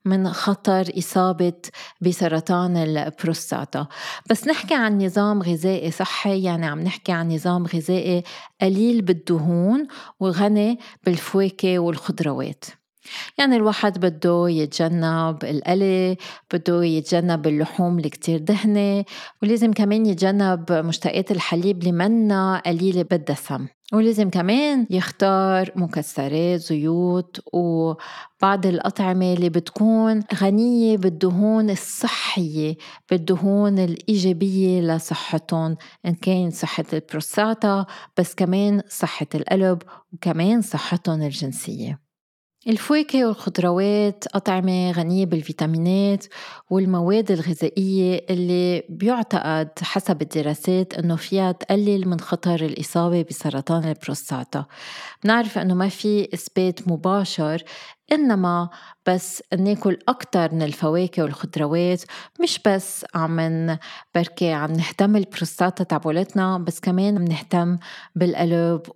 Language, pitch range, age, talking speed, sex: Arabic, 170-200 Hz, 20-39, 95 wpm, female